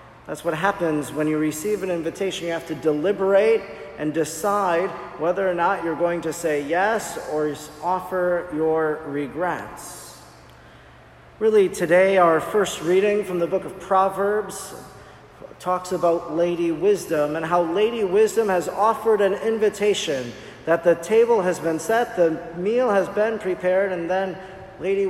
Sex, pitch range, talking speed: male, 160-195 Hz, 150 wpm